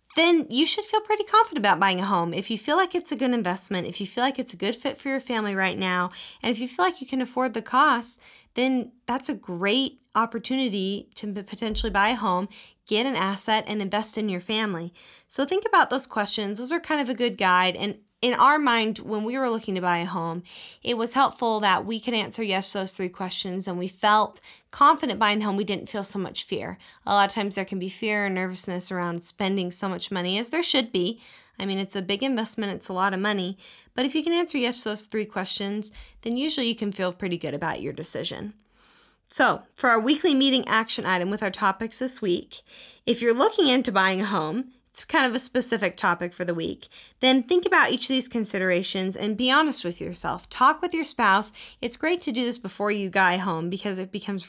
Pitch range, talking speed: 190-255 Hz, 235 wpm